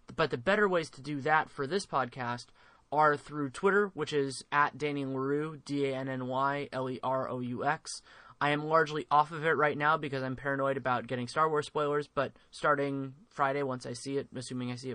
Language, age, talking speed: English, 20-39, 180 wpm